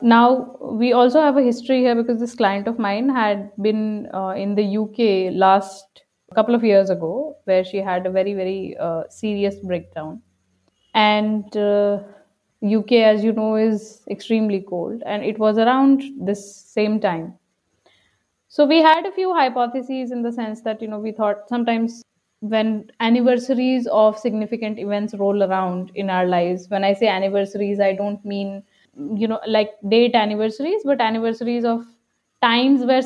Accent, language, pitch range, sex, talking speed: Indian, English, 200-235 Hz, female, 165 wpm